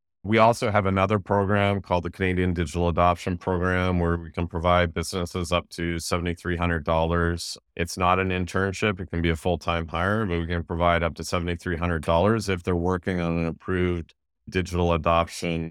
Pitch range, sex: 85-95 Hz, male